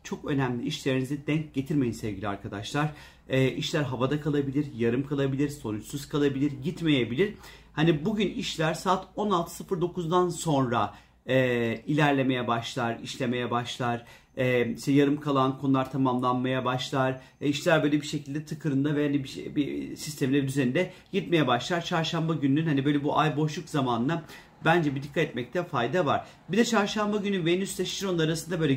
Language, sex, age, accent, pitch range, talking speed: Turkish, male, 40-59, native, 130-165 Hz, 150 wpm